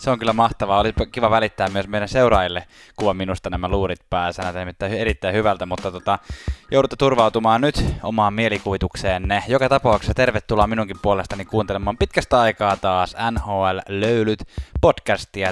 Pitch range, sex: 95-115 Hz, male